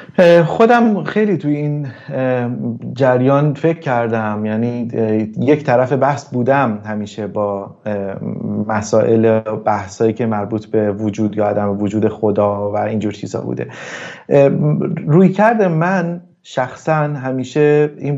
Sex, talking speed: male, 115 wpm